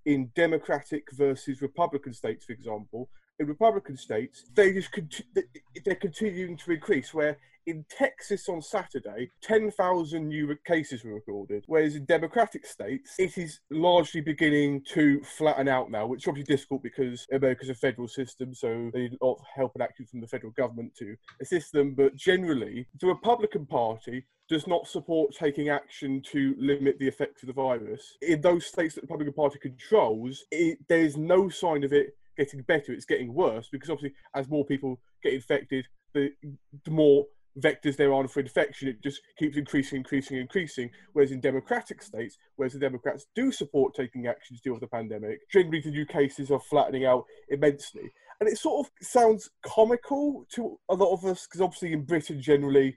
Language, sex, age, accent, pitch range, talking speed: English, male, 30-49, British, 135-175 Hz, 185 wpm